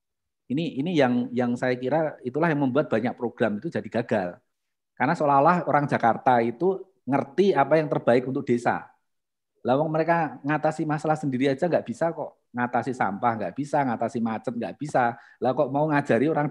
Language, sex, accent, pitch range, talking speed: Indonesian, male, native, 130-180 Hz, 170 wpm